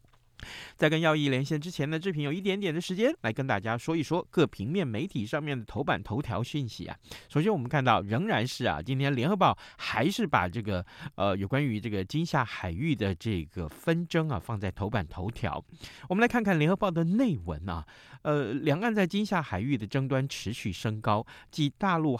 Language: Chinese